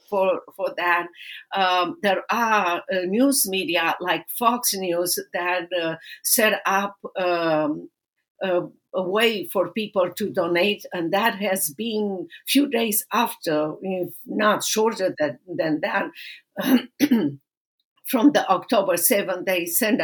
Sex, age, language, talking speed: female, 50-69, English, 130 wpm